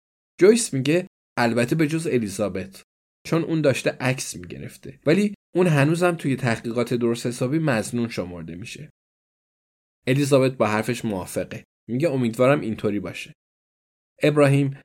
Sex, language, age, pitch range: male, Persian, 10-29, 110-145 Hz